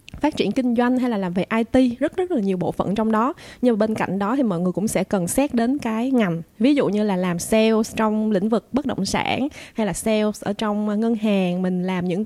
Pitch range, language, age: 200-255 Hz, Vietnamese, 20-39